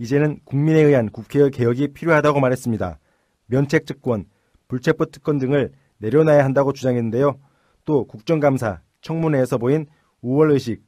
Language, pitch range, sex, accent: Korean, 120-150 Hz, male, native